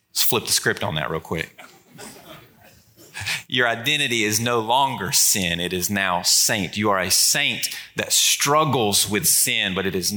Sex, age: male, 30-49